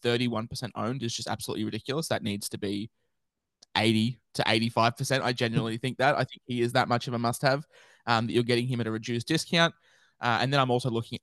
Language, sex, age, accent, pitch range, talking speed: English, male, 20-39, Australian, 115-130 Hz, 220 wpm